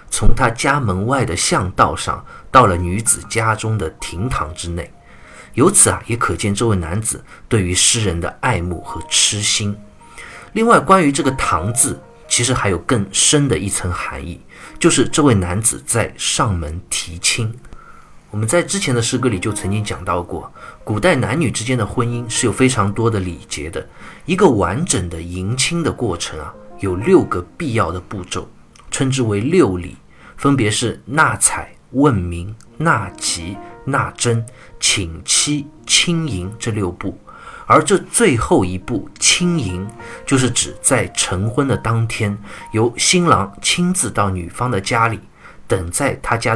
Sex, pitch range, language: male, 95-130 Hz, Chinese